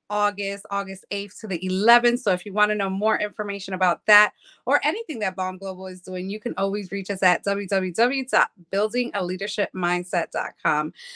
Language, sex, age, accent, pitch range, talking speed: English, female, 20-39, American, 185-210 Hz, 160 wpm